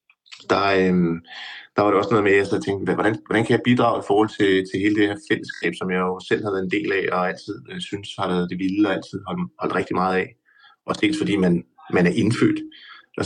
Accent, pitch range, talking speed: native, 95-120 Hz, 255 wpm